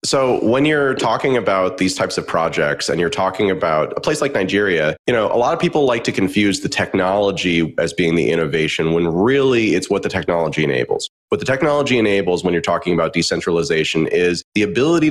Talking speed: 205 wpm